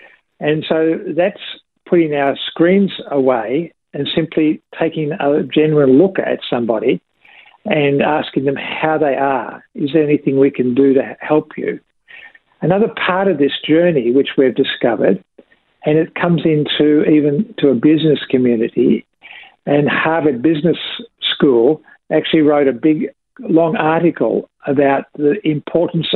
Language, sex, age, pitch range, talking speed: English, male, 50-69, 140-175 Hz, 140 wpm